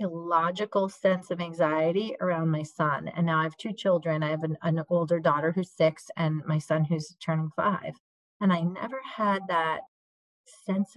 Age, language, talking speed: 30-49, English, 180 wpm